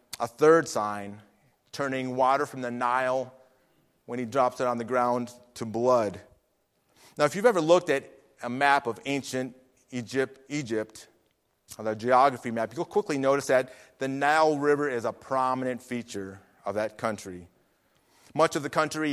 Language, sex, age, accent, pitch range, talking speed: English, male, 30-49, American, 115-140 Hz, 155 wpm